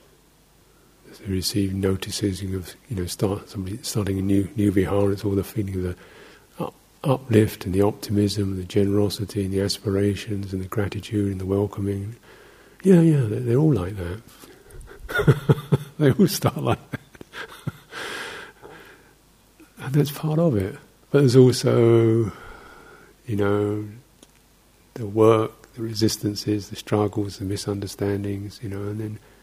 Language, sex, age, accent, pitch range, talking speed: English, male, 50-69, British, 100-130 Hz, 140 wpm